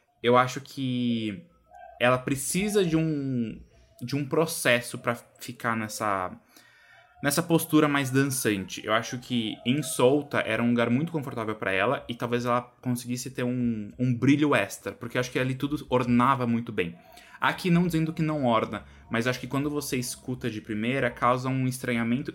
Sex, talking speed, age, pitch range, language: male, 170 wpm, 20-39, 115-140 Hz, Portuguese